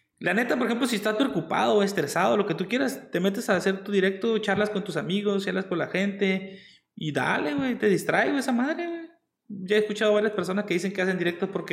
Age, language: 30-49, Spanish